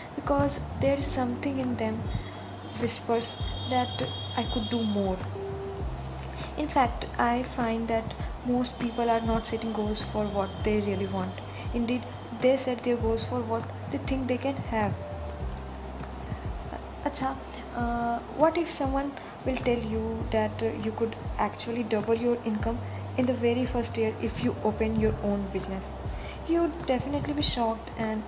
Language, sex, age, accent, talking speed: English, female, 20-39, Indian, 155 wpm